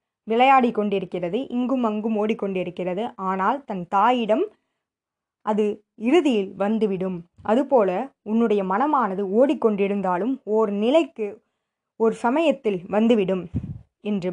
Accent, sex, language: native, female, Tamil